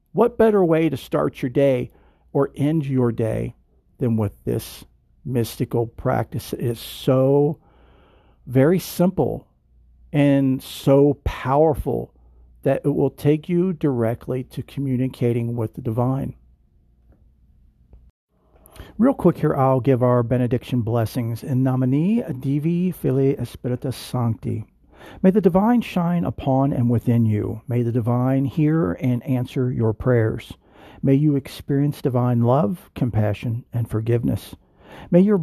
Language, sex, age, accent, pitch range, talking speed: English, male, 50-69, American, 110-145 Hz, 125 wpm